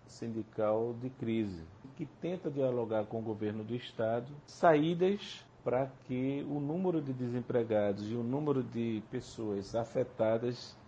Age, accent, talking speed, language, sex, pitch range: 50-69, Brazilian, 130 wpm, Portuguese, male, 115-135 Hz